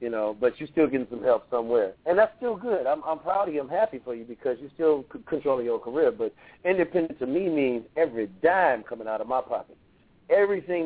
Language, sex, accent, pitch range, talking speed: English, male, American, 125-165 Hz, 230 wpm